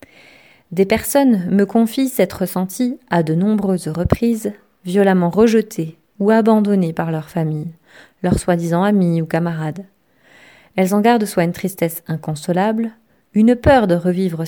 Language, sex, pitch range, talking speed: French, female, 170-215 Hz, 135 wpm